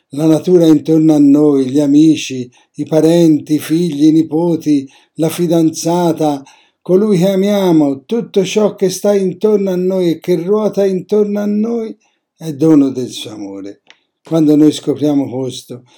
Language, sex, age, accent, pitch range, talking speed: Italian, male, 60-79, native, 135-170 Hz, 150 wpm